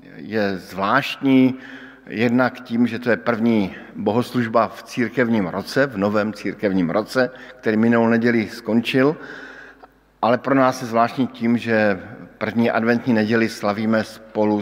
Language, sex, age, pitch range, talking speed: Slovak, male, 50-69, 105-125 Hz, 130 wpm